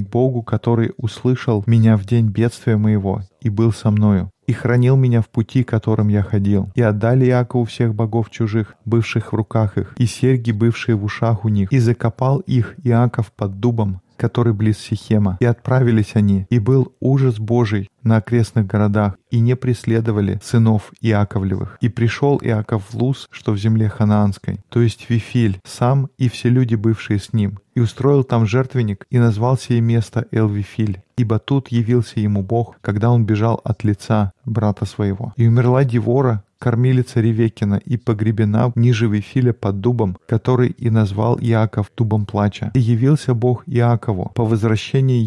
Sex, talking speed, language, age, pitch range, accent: male, 165 wpm, Russian, 20-39, 105-125 Hz, native